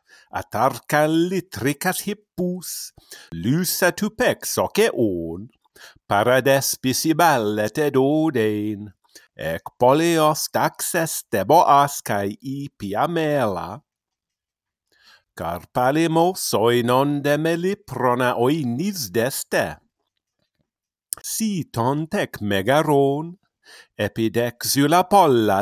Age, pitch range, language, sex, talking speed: 50-69, 105-160 Hz, English, male, 55 wpm